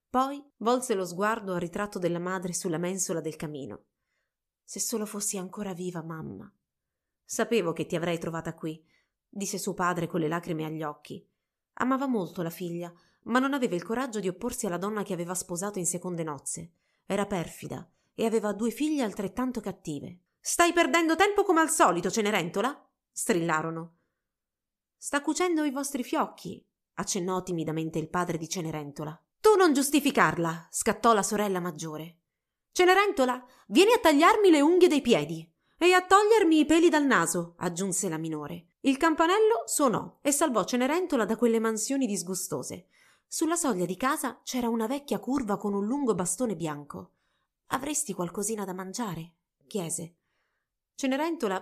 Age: 30-49